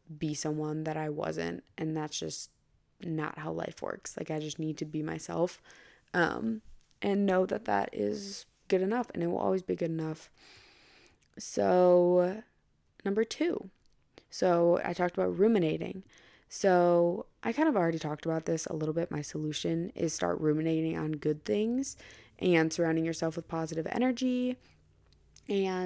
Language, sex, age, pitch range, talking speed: English, female, 20-39, 165-200 Hz, 160 wpm